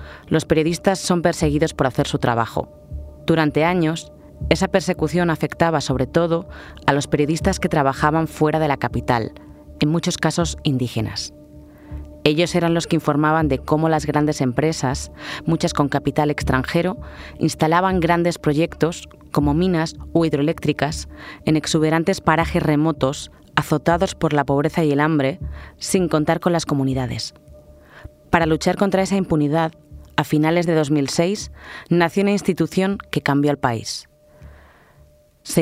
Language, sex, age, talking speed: Spanish, female, 30-49, 140 wpm